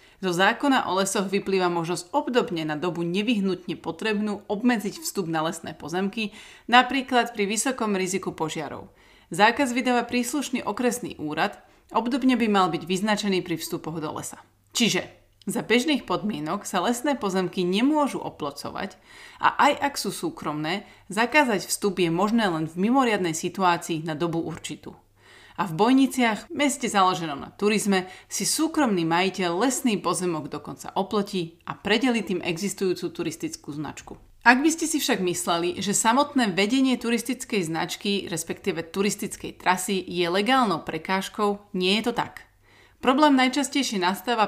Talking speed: 140 wpm